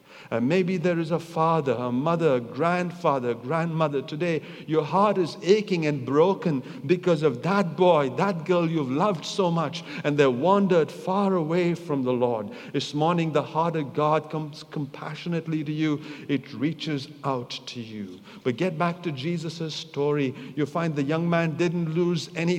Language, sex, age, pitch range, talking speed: English, male, 50-69, 150-180 Hz, 180 wpm